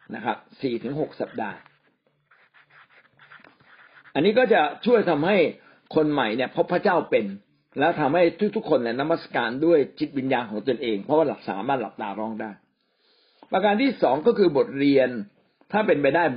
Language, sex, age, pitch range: Thai, male, 60-79, 125-175 Hz